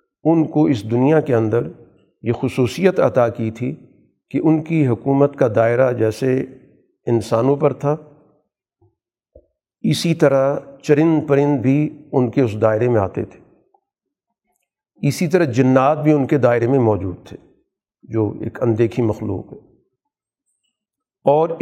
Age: 50-69